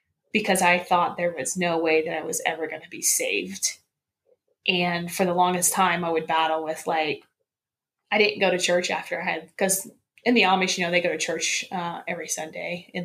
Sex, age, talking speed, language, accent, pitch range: female, 20-39, 215 wpm, English, American, 160-210 Hz